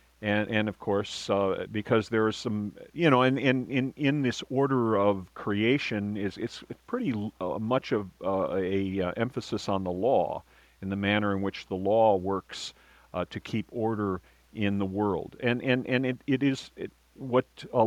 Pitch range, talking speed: 100-120 Hz, 190 wpm